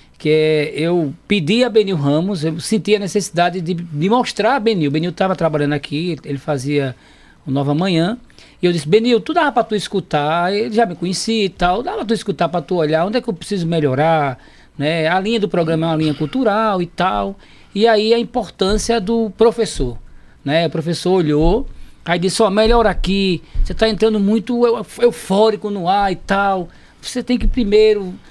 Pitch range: 165-220 Hz